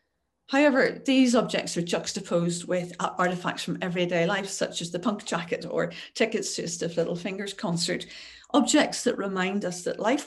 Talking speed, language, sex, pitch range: 170 wpm, English, female, 170-200 Hz